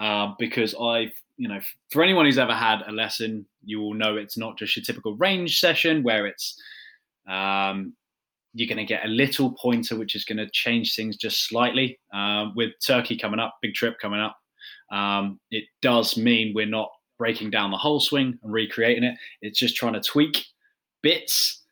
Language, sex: English, male